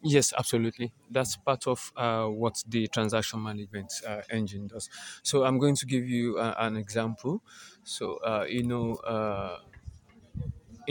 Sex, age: male, 20-39